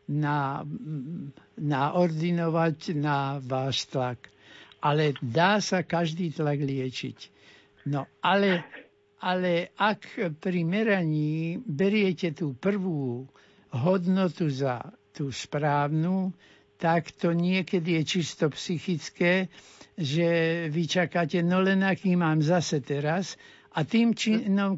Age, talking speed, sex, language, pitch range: 60-79, 105 wpm, male, Slovak, 145-190 Hz